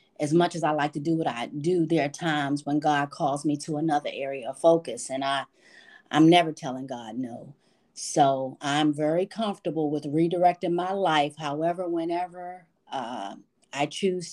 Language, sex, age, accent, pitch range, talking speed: English, female, 40-59, American, 145-175 Hz, 175 wpm